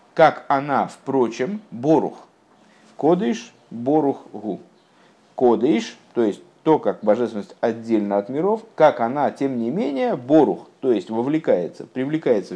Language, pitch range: Russian, 120-170 Hz